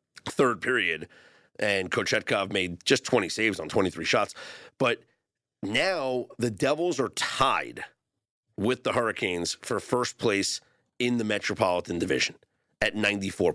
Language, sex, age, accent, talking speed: English, male, 40-59, American, 130 wpm